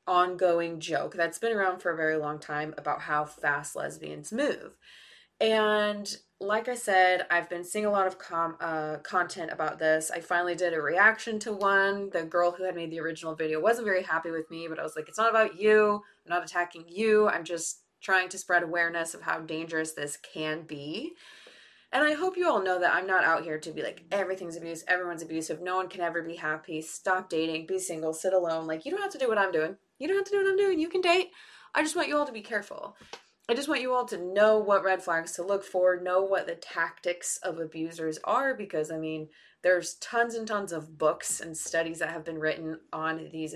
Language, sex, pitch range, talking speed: English, female, 160-200 Hz, 230 wpm